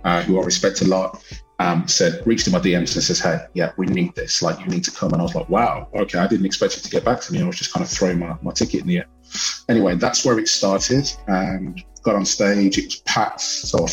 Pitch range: 90-105 Hz